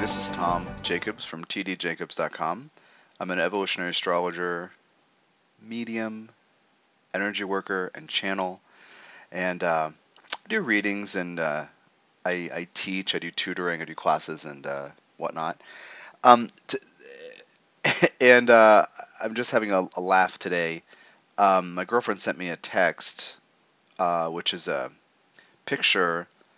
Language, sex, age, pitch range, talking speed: English, male, 30-49, 85-110 Hz, 125 wpm